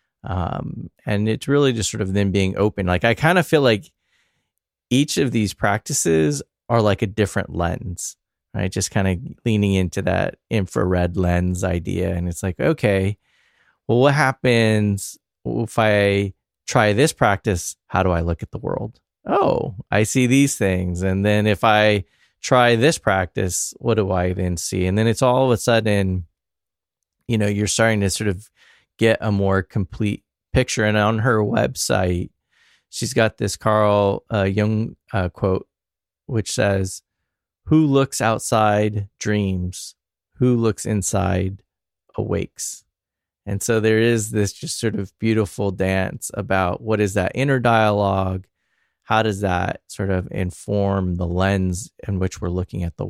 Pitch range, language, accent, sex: 95-115 Hz, English, American, male